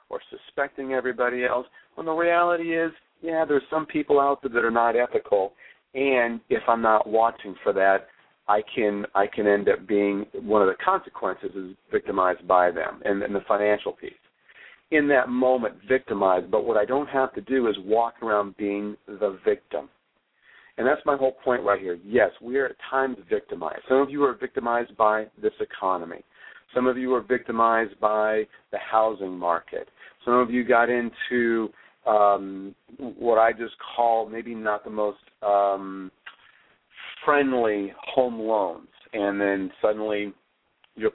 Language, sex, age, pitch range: English, male, 40-59, 100-130 Hz